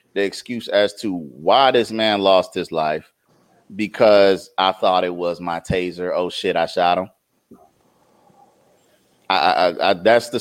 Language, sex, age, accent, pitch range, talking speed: English, male, 30-49, American, 90-110 Hz, 155 wpm